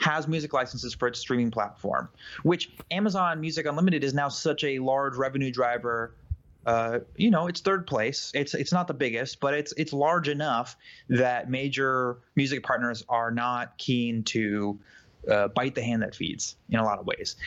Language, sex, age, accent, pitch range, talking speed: English, male, 20-39, American, 110-145 Hz, 180 wpm